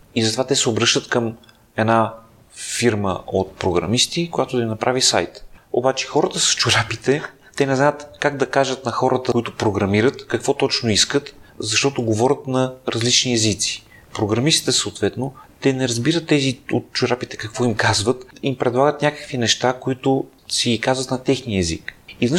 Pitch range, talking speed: 115-135 Hz, 160 wpm